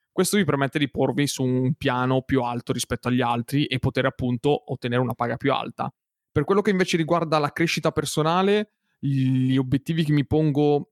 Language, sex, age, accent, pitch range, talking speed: Italian, male, 20-39, native, 130-155 Hz, 185 wpm